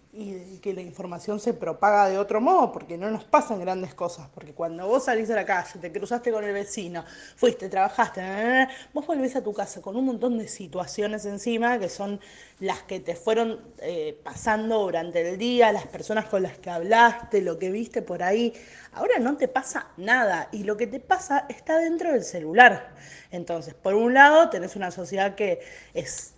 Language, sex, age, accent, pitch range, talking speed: Spanish, female, 20-39, Argentinian, 195-240 Hz, 200 wpm